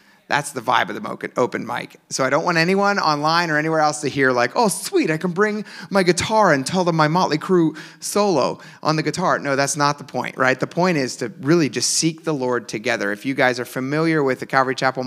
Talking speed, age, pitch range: 245 wpm, 30-49, 125-160 Hz